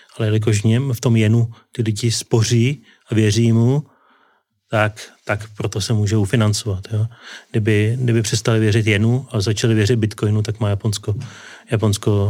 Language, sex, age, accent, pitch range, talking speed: Czech, male, 30-49, native, 110-140 Hz, 145 wpm